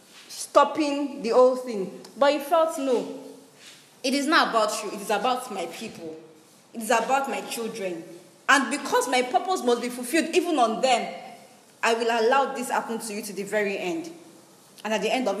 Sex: female